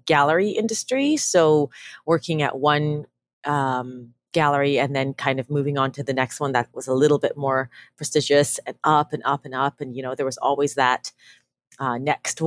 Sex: female